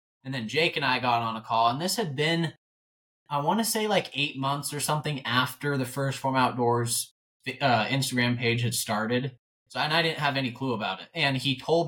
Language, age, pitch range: English, 20-39, 115-140 Hz